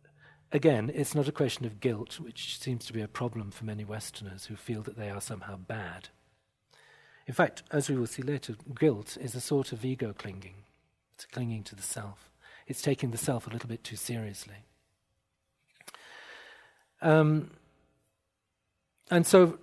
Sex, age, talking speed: male, 40-59, 165 wpm